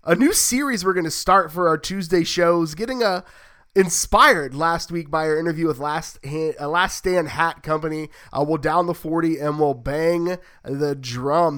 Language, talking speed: English, 185 wpm